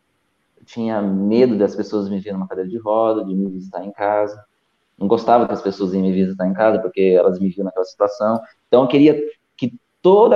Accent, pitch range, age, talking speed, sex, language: Brazilian, 100-125 Hz, 20-39, 205 wpm, male, Portuguese